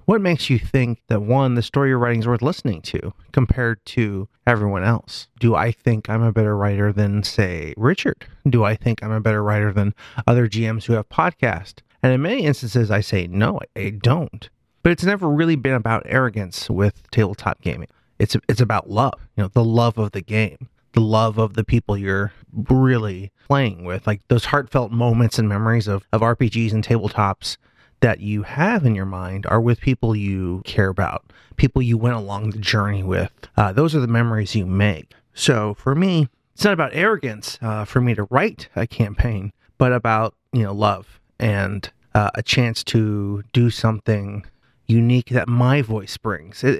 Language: English